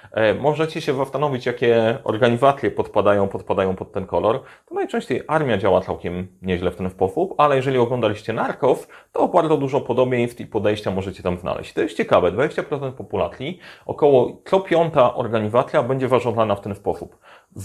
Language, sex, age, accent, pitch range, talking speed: Polish, male, 30-49, native, 95-130 Hz, 160 wpm